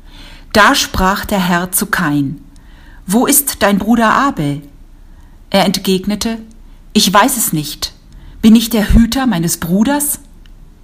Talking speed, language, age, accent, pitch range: 125 wpm, Portuguese, 50-69, German, 145-225 Hz